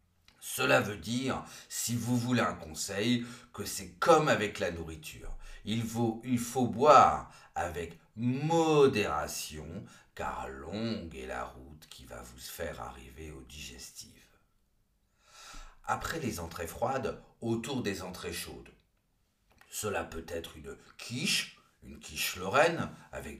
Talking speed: 125 wpm